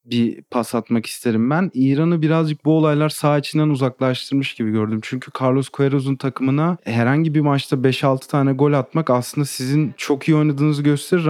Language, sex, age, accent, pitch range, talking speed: Turkish, male, 30-49, native, 125-155 Hz, 165 wpm